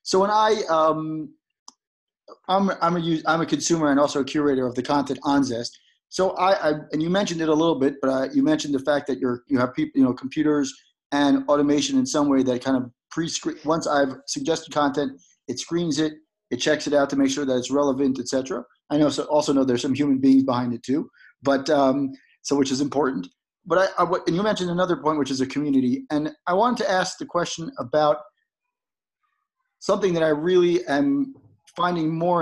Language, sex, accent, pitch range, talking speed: English, male, American, 140-180 Hz, 215 wpm